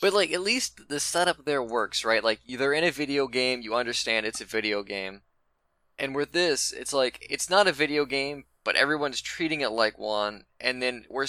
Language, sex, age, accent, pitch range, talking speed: English, male, 20-39, American, 105-145 Hz, 215 wpm